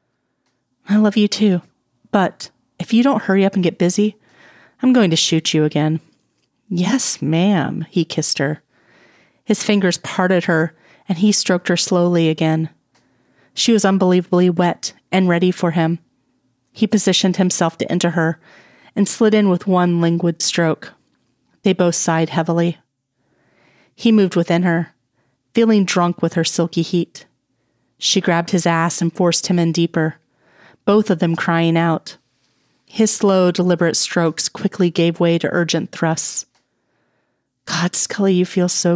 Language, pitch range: English, 165-190 Hz